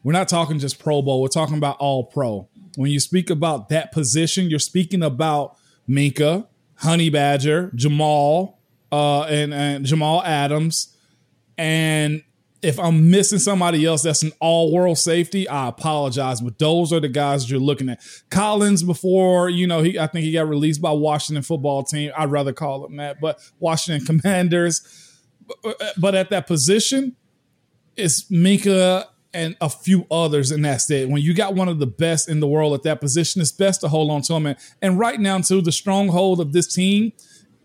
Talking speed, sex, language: 180 wpm, male, English